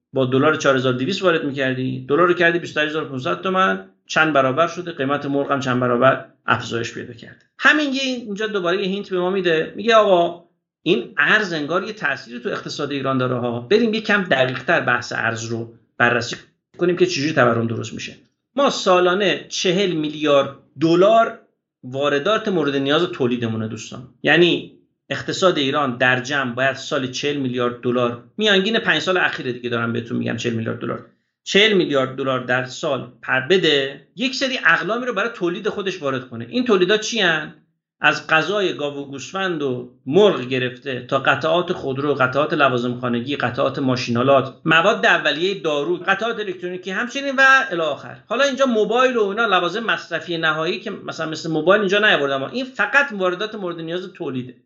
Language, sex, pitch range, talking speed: Persian, male, 130-190 Hz, 165 wpm